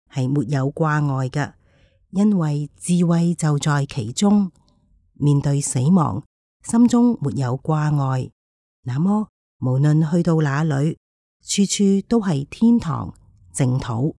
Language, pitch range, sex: Chinese, 130-175 Hz, female